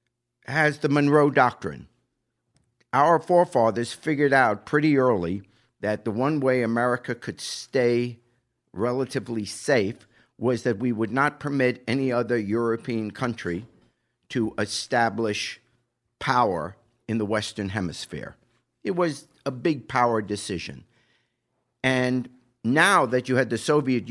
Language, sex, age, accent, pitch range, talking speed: English, male, 50-69, American, 105-130 Hz, 120 wpm